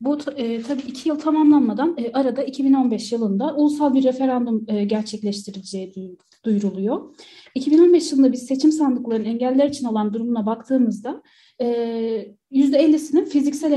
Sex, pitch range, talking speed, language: female, 225-285 Hz, 110 wpm, Turkish